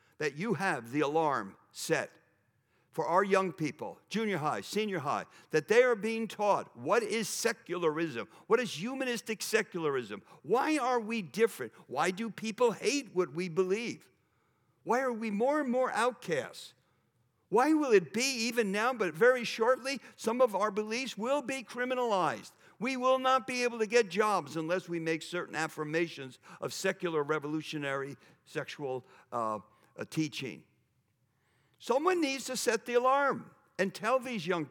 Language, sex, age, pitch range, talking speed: English, male, 60-79, 155-240 Hz, 155 wpm